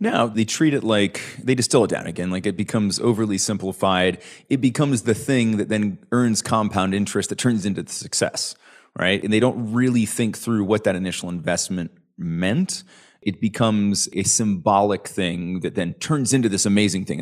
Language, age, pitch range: English, 30-49, 95-120 Hz